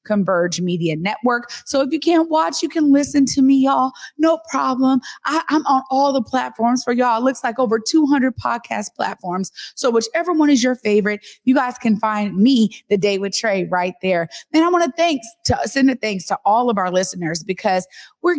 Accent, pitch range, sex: American, 200-280 Hz, female